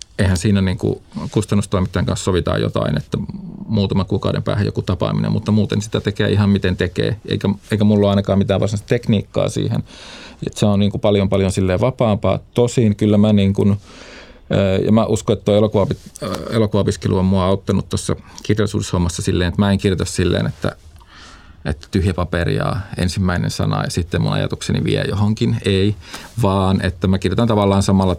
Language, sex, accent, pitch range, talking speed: Finnish, male, native, 95-105 Hz, 170 wpm